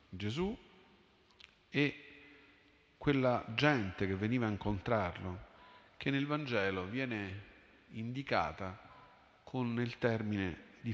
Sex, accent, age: male, native, 50-69